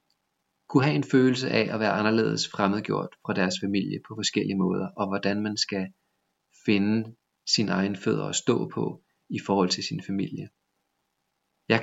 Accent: native